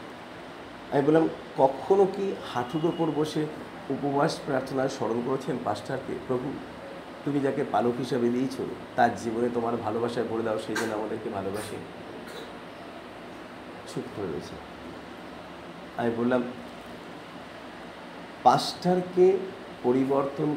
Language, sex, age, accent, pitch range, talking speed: Bengali, male, 50-69, native, 120-155 Hz, 95 wpm